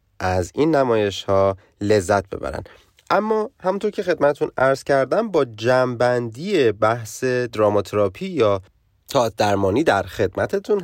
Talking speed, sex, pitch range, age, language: 115 wpm, male, 95-120 Hz, 30-49, Persian